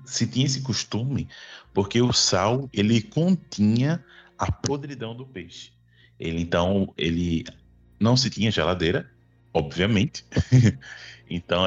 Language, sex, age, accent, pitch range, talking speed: Portuguese, male, 20-39, Brazilian, 85-120 Hz, 115 wpm